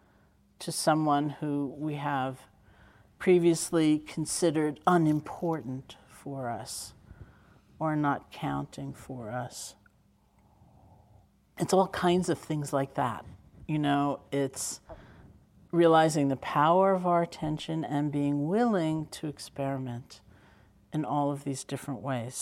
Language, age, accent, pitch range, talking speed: English, 50-69, American, 130-160 Hz, 110 wpm